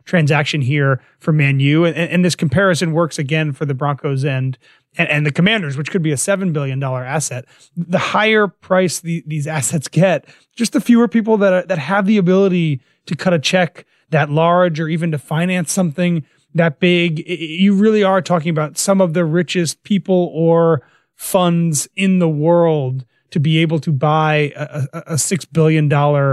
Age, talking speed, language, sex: 30-49, 180 wpm, English, male